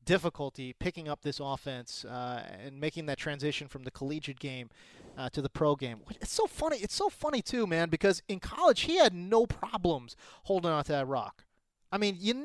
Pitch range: 140-185 Hz